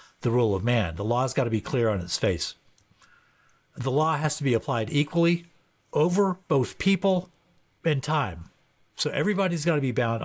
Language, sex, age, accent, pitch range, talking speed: English, male, 50-69, American, 115-155 Hz, 185 wpm